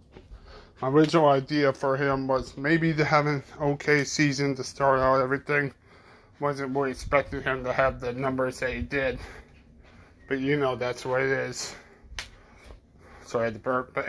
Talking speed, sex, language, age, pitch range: 170 wpm, male, English, 20-39, 110-140 Hz